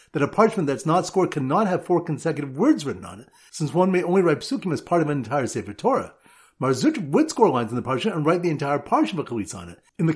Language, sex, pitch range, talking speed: English, male, 150-210 Hz, 270 wpm